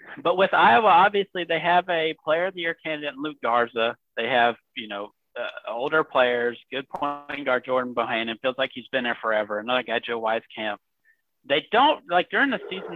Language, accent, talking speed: English, American, 200 wpm